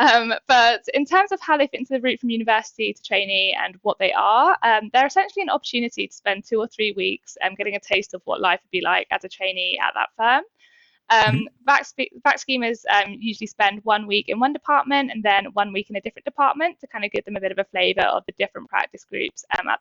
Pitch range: 195-265 Hz